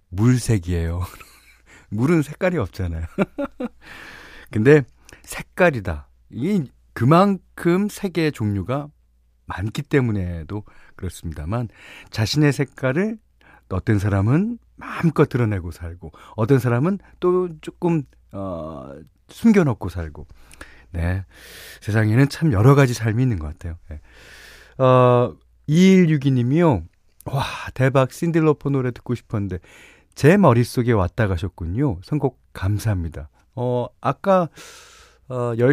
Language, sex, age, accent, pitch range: Korean, male, 40-59, native, 90-145 Hz